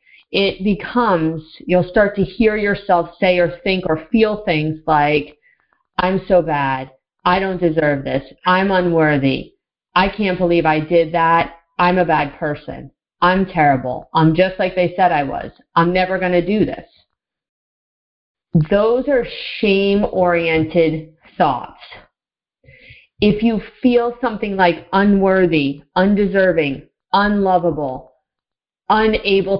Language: English